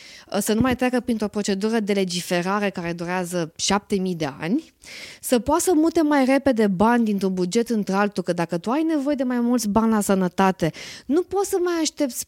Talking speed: 195 wpm